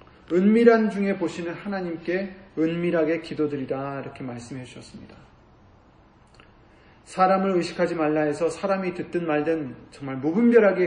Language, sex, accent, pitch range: Korean, male, native, 140-190 Hz